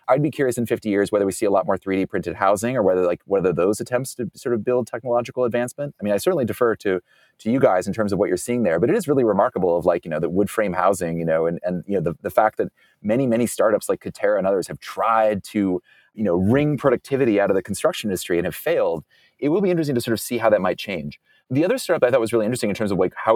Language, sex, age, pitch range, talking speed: English, male, 30-49, 95-125 Hz, 295 wpm